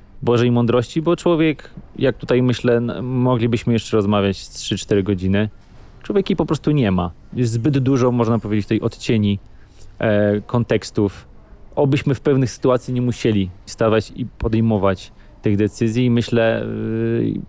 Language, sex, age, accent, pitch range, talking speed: Polish, male, 20-39, native, 105-125 Hz, 135 wpm